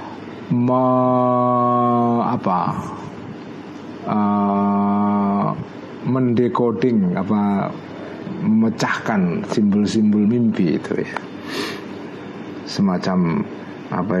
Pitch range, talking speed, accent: 115-165 Hz, 50 wpm, native